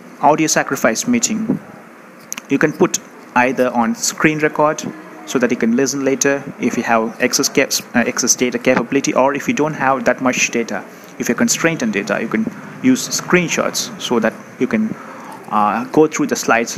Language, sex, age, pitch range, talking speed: Tamil, male, 30-49, 120-160 Hz, 180 wpm